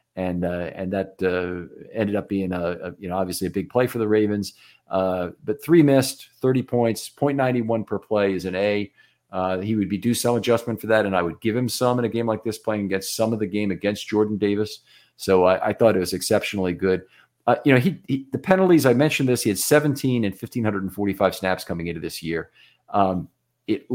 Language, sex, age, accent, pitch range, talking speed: English, male, 40-59, American, 95-120 Hz, 225 wpm